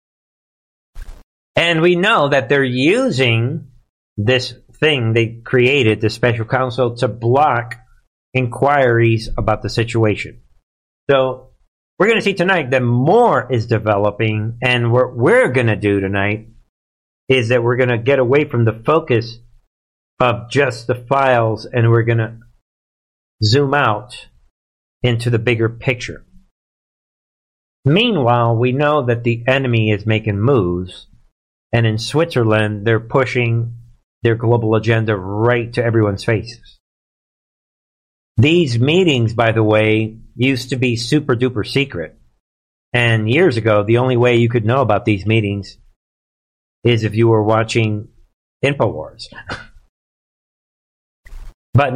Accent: American